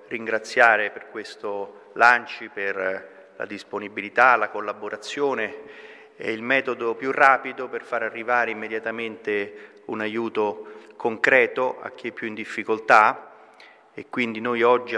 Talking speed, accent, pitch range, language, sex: 125 wpm, native, 110-135 Hz, Italian, male